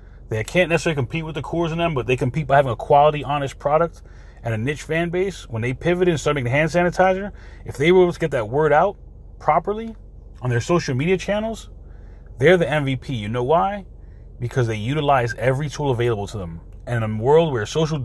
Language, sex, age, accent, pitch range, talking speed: English, male, 30-49, American, 110-150 Hz, 225 wpm